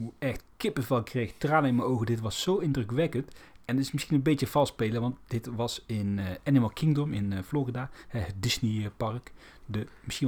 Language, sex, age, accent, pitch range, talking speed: Dutch, male, 40-59, Dutch, 110-135 Hz, 210 wpm